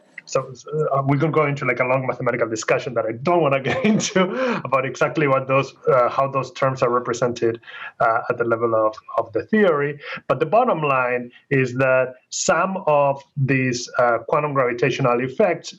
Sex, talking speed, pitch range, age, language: male, 190 wpm, 130-170 Hz, 30-49, English